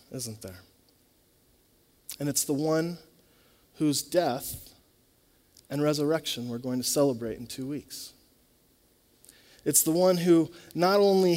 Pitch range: 125-170 Hz